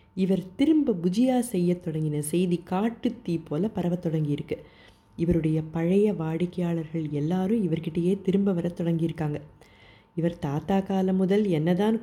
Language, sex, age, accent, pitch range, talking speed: Tamil, female, 30-49, native, 150-195 Hz, 115 wpm